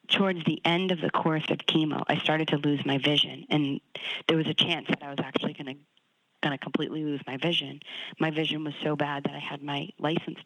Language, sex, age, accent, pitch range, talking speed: English, female, 40-59, American, 145-180 Hz, 225 wpm